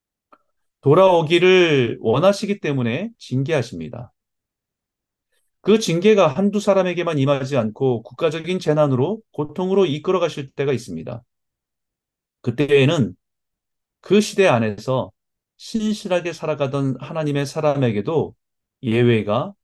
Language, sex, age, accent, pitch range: Korean, male, 40-59, native, 120-165 Hz